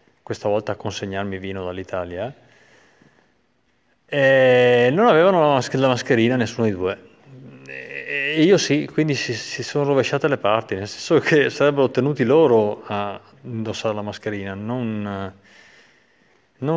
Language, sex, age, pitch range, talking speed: Italian, male, 30-49, 100-130 Hz, 125 wpm